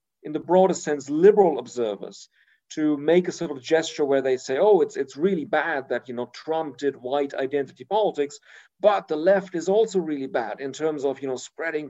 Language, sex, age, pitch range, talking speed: English, male, 40-59, 135-175 Hz, 205 wpm